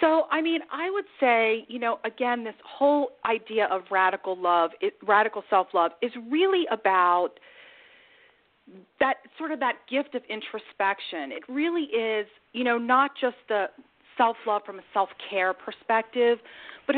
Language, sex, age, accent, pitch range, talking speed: English, female, 40-59, American, 200-275 Hz, 145 wpm